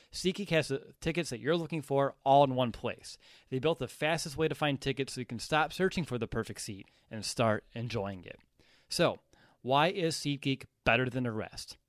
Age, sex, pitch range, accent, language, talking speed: 30-49, male, 120-150 Hz, American, English, 205 wpm